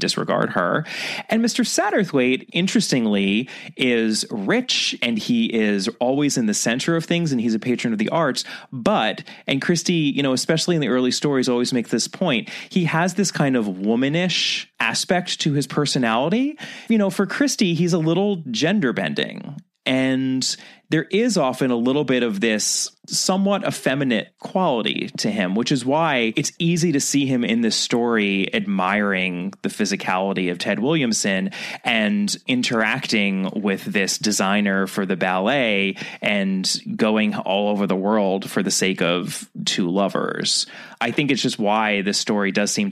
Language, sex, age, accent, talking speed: English, male, 30-49, American, 165 wpm